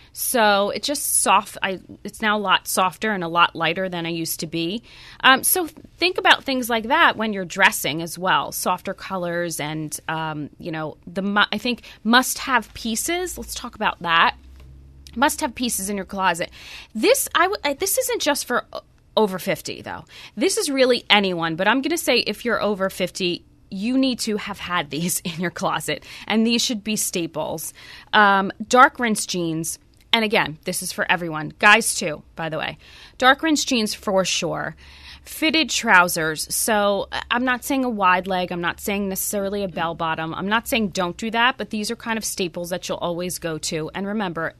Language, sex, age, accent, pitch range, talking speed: English, female, 20-39, American, 175-230 Hz, 195 wpm